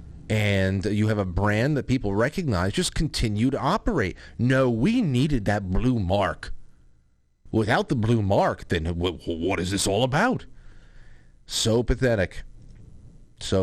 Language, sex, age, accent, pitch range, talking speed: English, male, 40-59, American, 90-120 Hz, 135 wpm